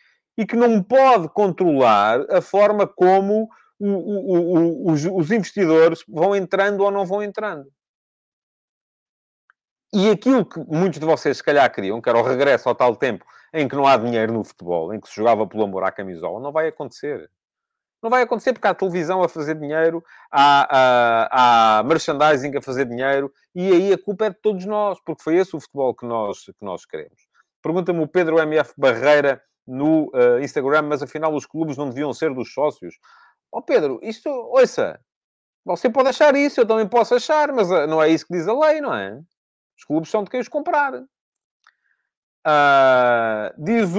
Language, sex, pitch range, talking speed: Portuguese, male, 145-215 Hz, 175 wpm